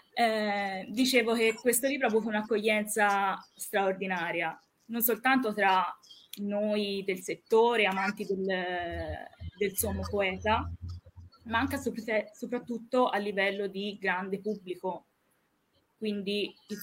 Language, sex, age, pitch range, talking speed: Italian, female, 20-39, 195-225 Hz, 105 wpm